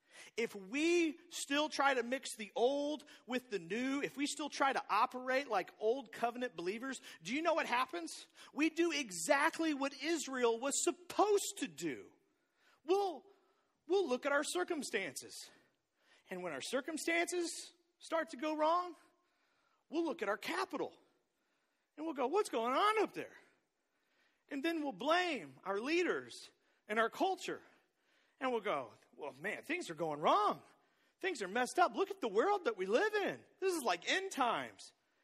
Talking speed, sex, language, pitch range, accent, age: 165 wpm, male, English, 255-355 Hz, American, 40-59